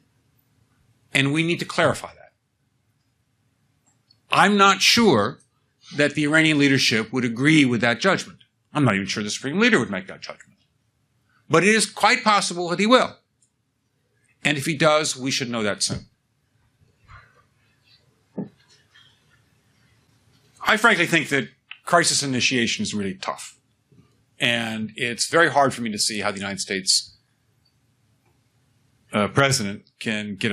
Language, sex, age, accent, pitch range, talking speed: English, male, 60-79, American, 110-140 Hz, 140 wpm